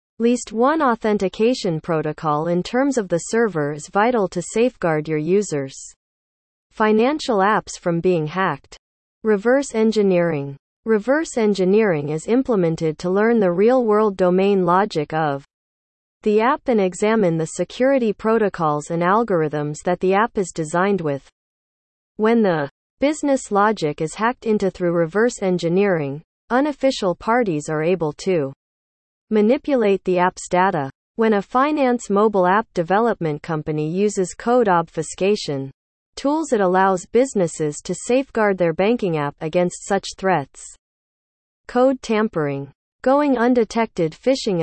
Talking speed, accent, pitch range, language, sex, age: 130 wpm, American, 160-225 Hz, English, female, 40-59